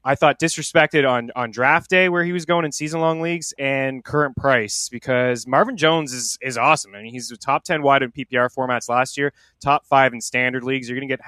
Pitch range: 120-150 Hz